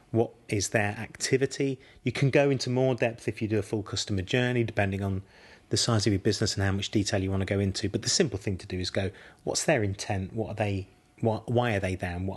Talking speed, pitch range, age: 260 wpm, 100-125 Hz, 30-49